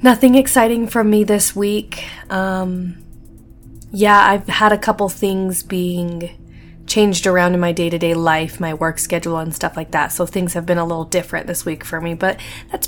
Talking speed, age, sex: 185 wpm, 20-39, female